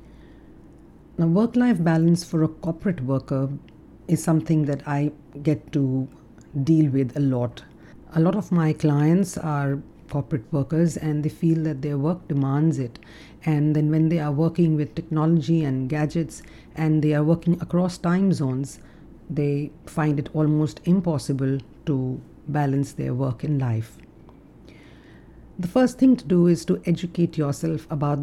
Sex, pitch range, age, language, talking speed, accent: female, 140-165 Hz, 50-69, English, 150 wpm, Indian